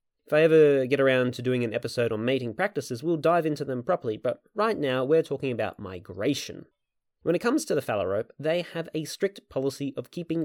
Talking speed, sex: 210 wpm, male